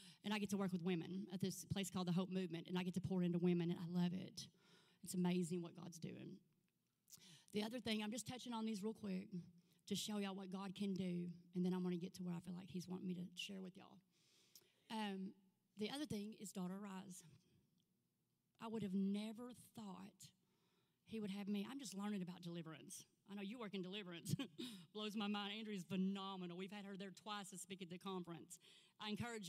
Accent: American